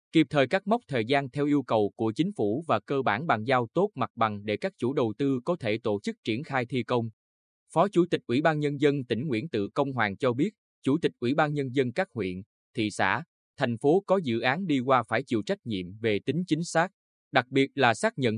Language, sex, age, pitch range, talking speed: Vietnamese, male, 20-39, 110-155 Hz, 250 wpm